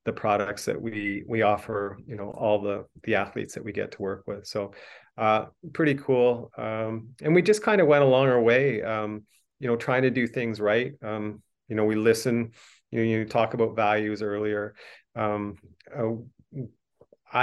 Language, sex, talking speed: English, male, 185 wpm